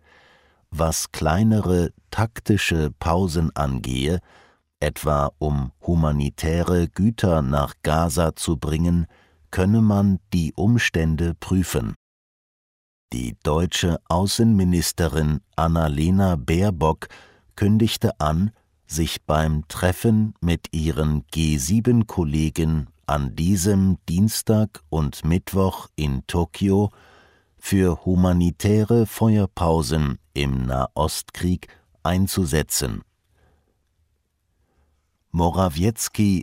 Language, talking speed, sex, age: English, 75 wpm, male, 50-69